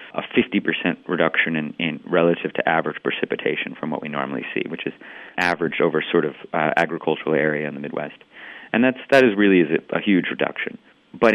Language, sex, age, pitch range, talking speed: English, male, 30-49, 80-95 Hz, 195 wpm